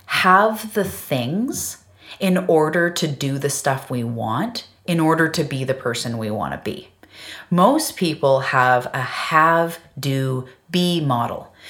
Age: 30-49